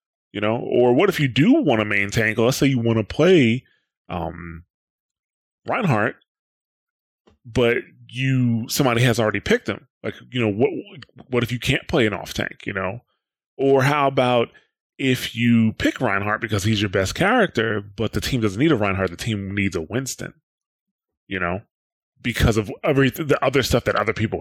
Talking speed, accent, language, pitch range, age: 185 wpm, American, English, 110-135 Hz, 20-39